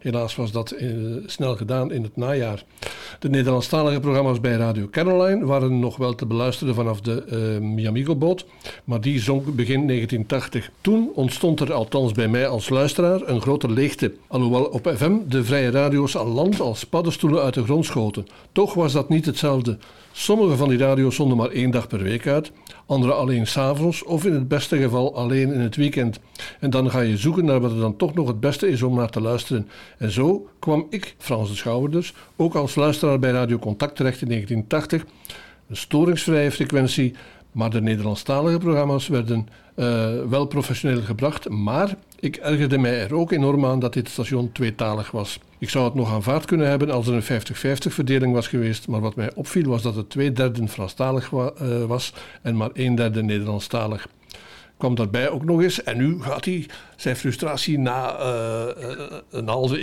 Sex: male